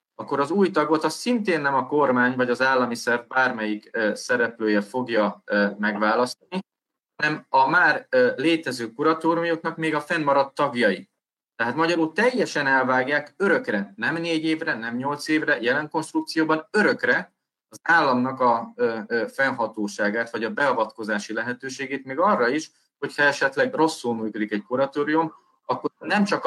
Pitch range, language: 110-155 Hz, Hungarian